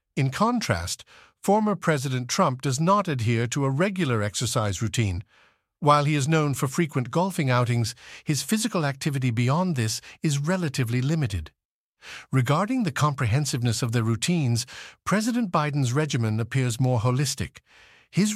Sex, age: male, 50-69